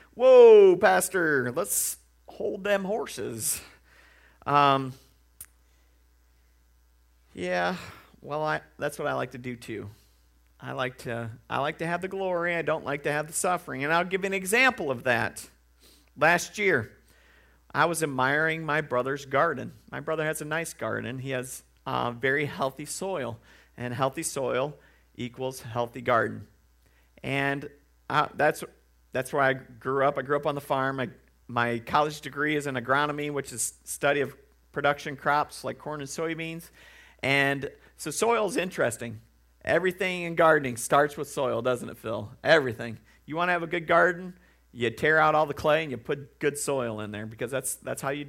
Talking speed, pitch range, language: 170 wpm, 115-155 Hz, English